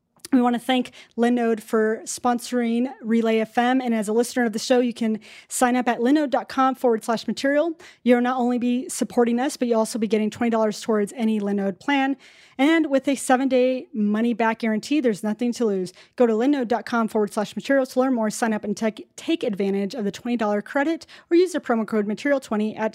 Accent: American